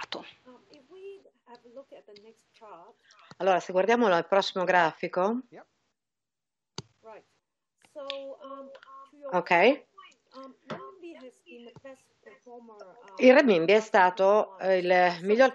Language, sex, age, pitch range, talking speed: English, female, 50-69, 180-230 Hz, 45 wpm